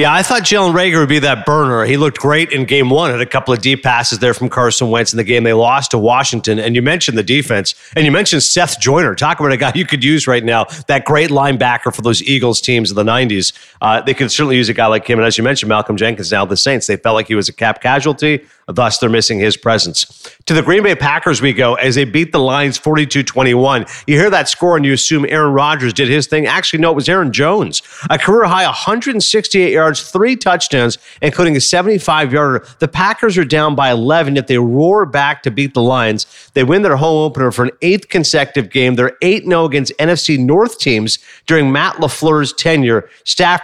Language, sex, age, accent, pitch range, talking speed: English, male, 40-59, American, 125-160 Hz, 230 wpm